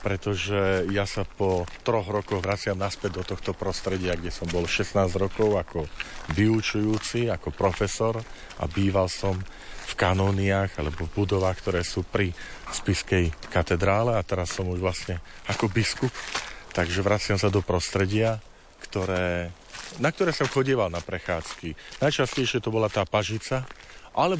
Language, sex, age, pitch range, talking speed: Slovak, male, 40-59, 90-110 Hz, 145 wpm